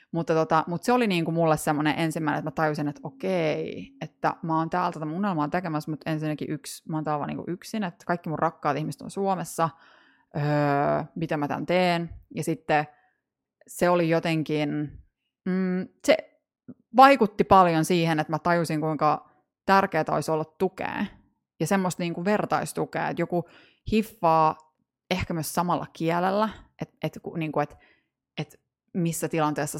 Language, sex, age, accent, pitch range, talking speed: Finnish, female, 20-39, native, 150-180 Hz, 160 wpm